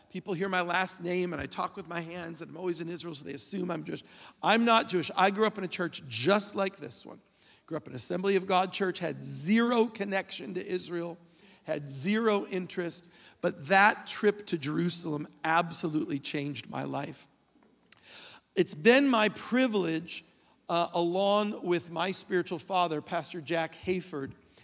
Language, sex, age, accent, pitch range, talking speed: English, male, 50-69, American, 165-195 Hz, 175 wpm